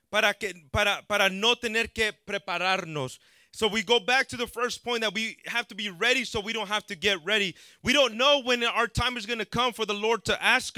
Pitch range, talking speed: 200-245 Hz, 245 wpm